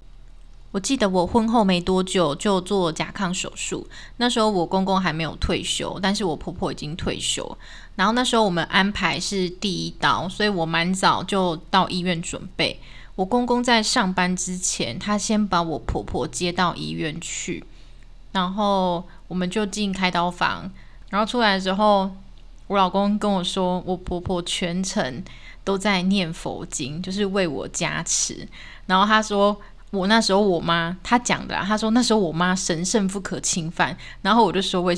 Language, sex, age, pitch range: Chinese, female, 20-39, 175-205 Hz